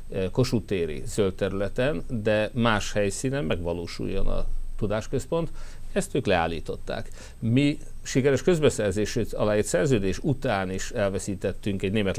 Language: Hungarian